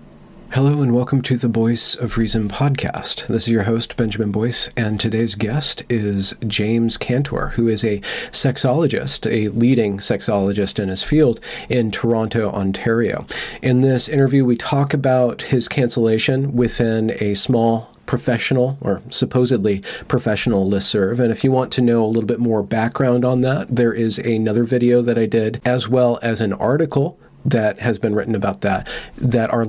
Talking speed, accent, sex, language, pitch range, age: 170 wpm, American, male, English, 110-125 Hz, 40-59